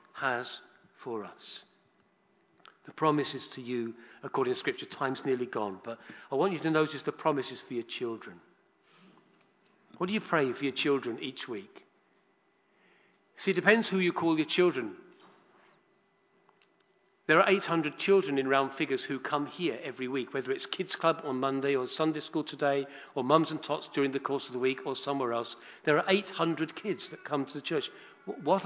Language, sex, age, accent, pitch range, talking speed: English, male, 50-69, British, 140-190 Hz, 180 wpm